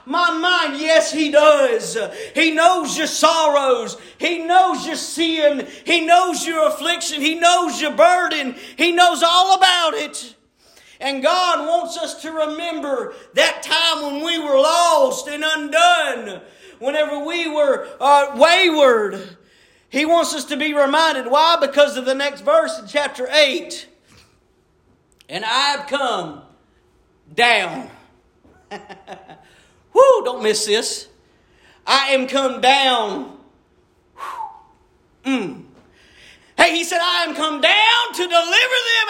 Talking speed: 125 wpm